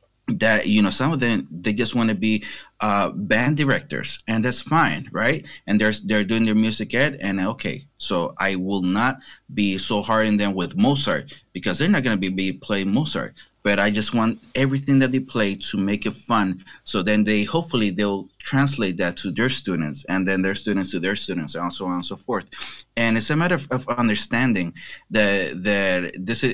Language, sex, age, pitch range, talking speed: English, male, 30-49, 95-110 Hz, 210 wpm